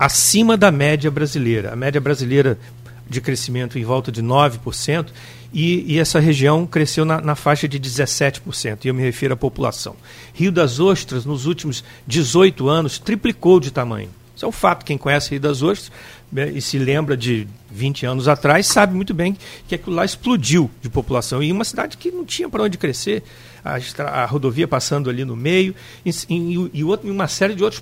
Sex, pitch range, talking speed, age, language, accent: male, 125-175 Hz, 180 wpm, 60-79, Portuguese, Brazilian